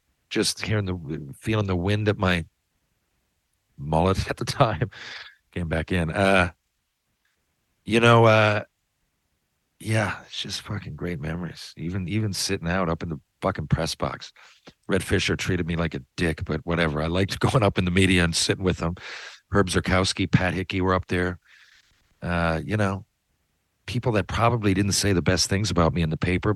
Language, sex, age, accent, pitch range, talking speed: English, male, 50-69, American, 85-105 Hz, 175 wpm